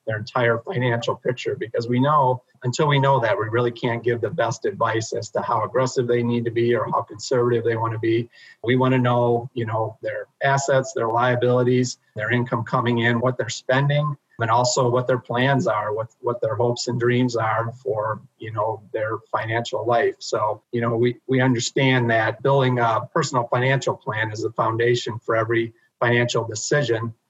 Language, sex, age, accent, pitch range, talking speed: English, male, 40-59, American, 115-125 Hz, 195 wpm